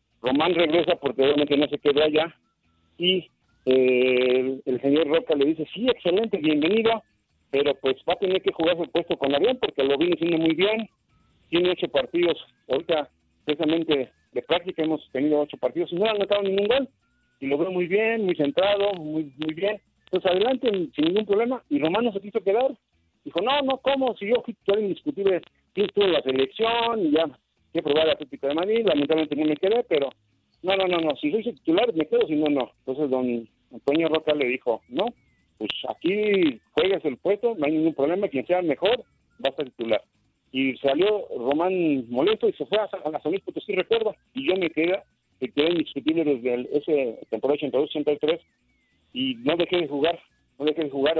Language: Spanish